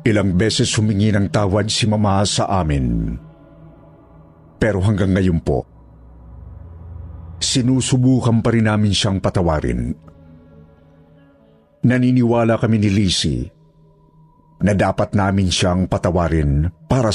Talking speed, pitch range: 100 wpm, 85-130 Hz